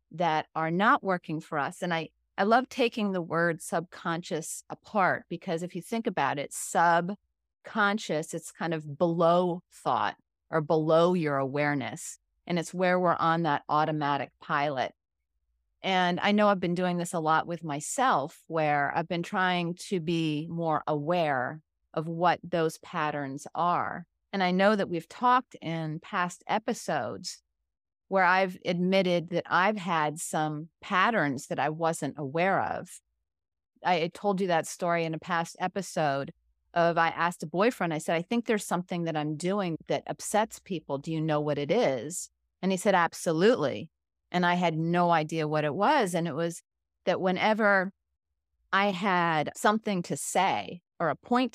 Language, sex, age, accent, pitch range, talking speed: English, female, 30-49, American, 155-190 Hz, 165 wpm